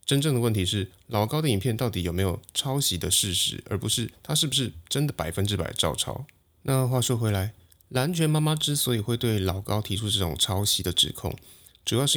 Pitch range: 95-125 Hz